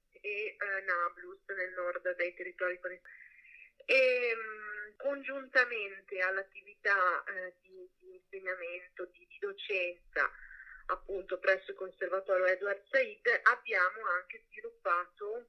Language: Italian